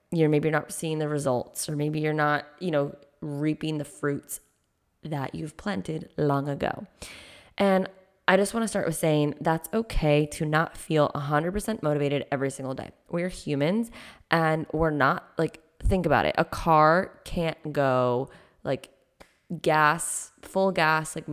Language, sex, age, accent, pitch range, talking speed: English, female, 20-39, American, 150-190 Hz, 160 wpm